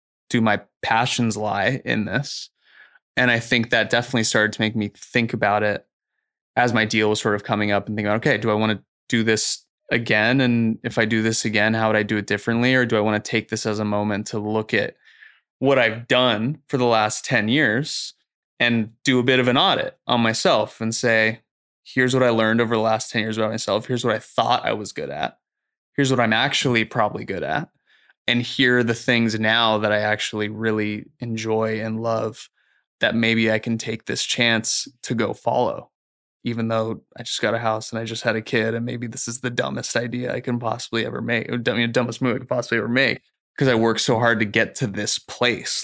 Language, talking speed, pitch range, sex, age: English, 230 wpm, 110-120 Hz, male, 20-39